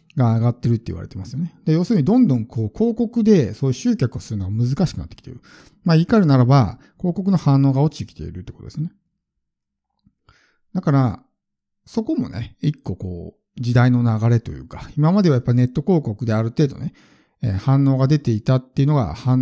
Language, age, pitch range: Japanese, 50-69, 115-160 Hz